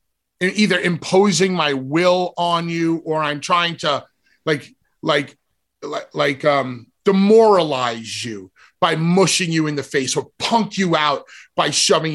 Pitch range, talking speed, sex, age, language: 170-220 Hz, 140 wpm, male, 30-49, English